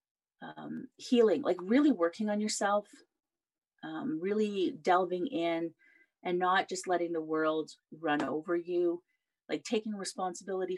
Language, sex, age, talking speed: English, female, 30-49, 120 wpm